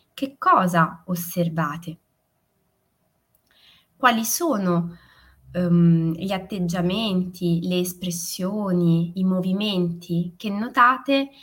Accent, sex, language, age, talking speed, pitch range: native, female, Italian, 20-39, 70 wpm, 175-245 Hz